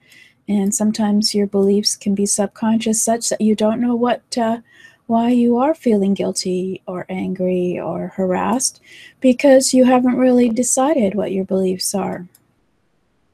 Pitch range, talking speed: 210-250 Hz, 145 wpm